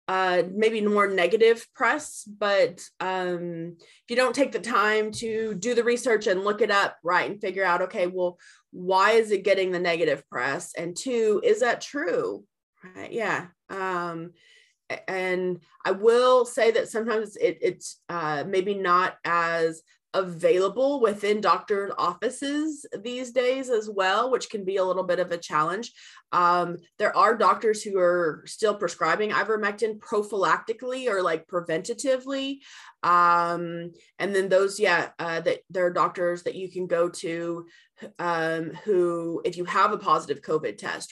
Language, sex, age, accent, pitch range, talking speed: English, female, 20-39, American, 170-215 Hz, 155 wpm